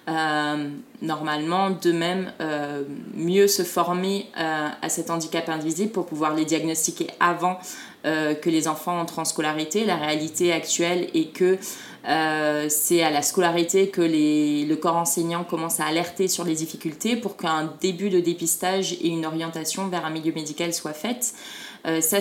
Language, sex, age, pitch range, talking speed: French, female, 20-39, 165-195 Hz, 170 wpm